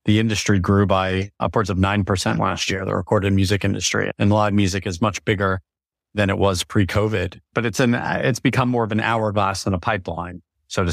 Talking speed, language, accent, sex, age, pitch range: 210 wpm, English, American, male, 30-49, 95-115 Hz